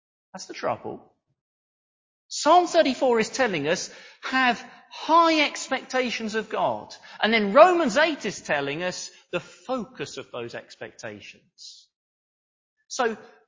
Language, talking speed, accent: English, 115 wpm, British